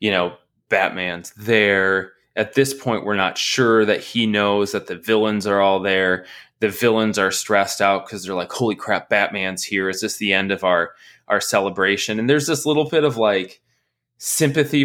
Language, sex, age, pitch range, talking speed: English, male, 20-39, 95-135 Hz, 190 wpm